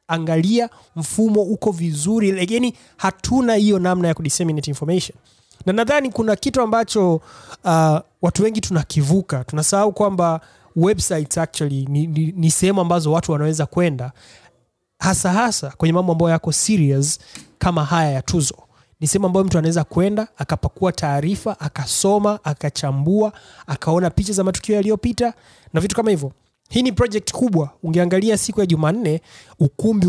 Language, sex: Swahili, male